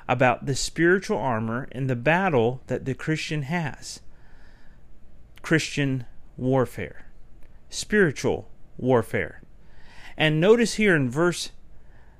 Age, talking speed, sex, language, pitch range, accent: 40-59, 100 wpm, male, English, 130-175 Hz, American